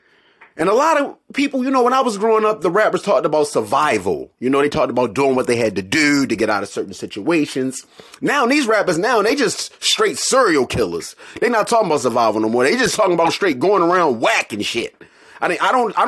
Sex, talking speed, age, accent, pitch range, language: male, 245 wpm, 30-49, American, 145-225 Hz, English